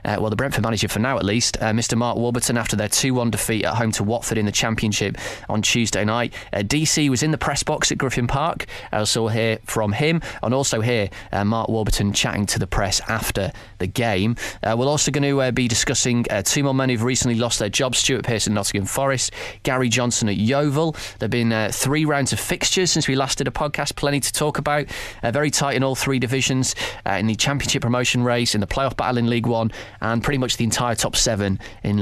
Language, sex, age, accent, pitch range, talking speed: English, male, 20-39, British, 110-140 Hz, 235 wpm